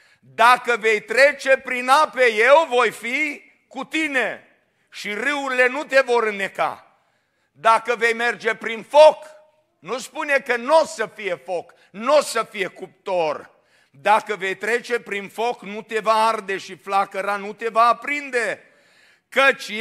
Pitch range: 210-275 Hz